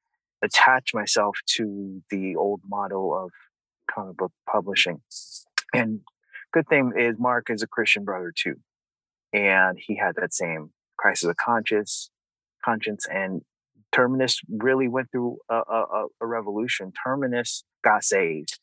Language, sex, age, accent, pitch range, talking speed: English, male, 30-49, American, 110-135 Hz, 140 wpm